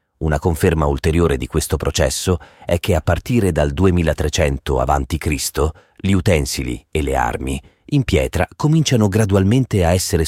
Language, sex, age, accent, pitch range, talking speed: Italian, male, 40-59, native, 80-100 Hz, 140 wpm